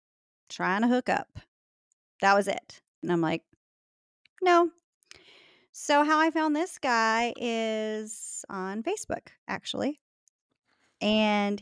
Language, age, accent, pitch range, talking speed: English, 30-49, American, 185-255 Hz, 115 wpm